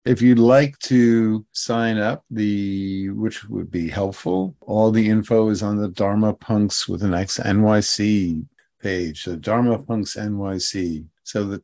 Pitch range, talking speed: 95-120 Hz, 155 wpm